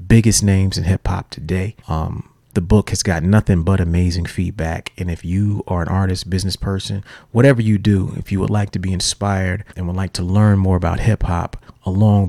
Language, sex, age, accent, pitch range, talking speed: English, male, 30-49, American, 90-110 Hz, 210 wpm